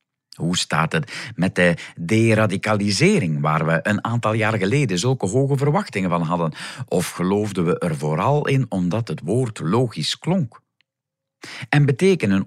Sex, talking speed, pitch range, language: male, 145 wpm, 95-140 Hz, Dutch